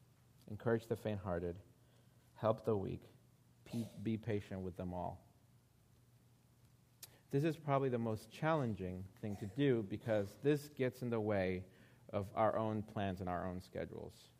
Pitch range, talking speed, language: 105-125 Hz, 145 wpm, English